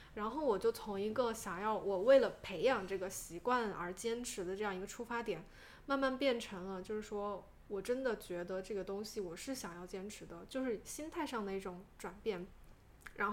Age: 10-29